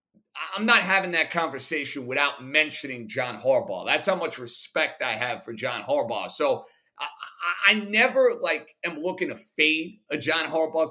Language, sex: English, male